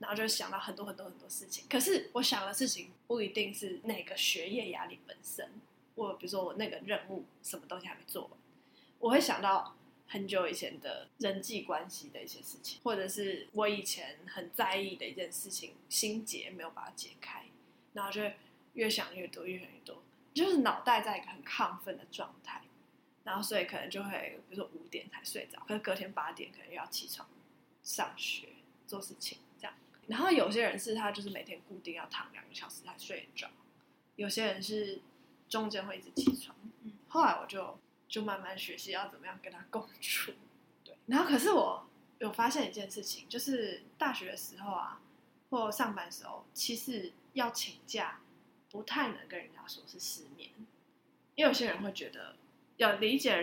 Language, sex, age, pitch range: Chinese, female, 10-29, 195-260 Hz